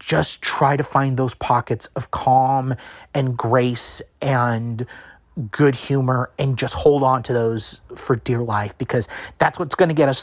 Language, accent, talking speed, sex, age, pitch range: English, American, 170 wpm, male, 30-49, 120-140 Hz